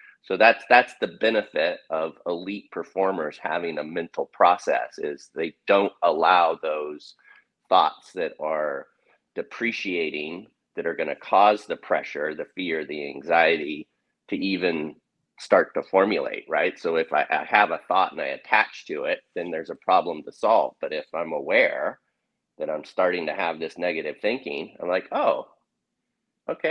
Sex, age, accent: male, 30-49, American